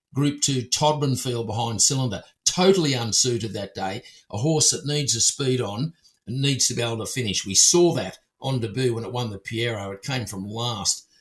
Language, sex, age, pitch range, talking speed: English, male, 50-69, 115-150 Hz, 205 wpm